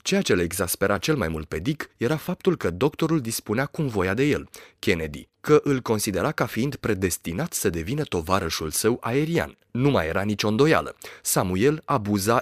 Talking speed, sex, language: 180 wpm, male, Romanian